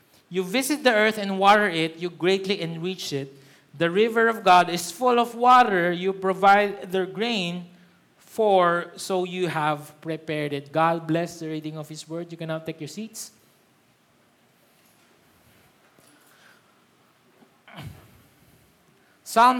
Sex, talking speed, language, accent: male, 130 wpm, Filipino, native